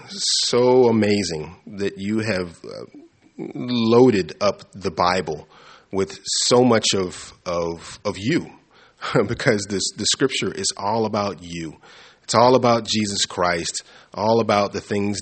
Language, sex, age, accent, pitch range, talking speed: English, male, 30-49, American, 90-115 Hz, 130 wpm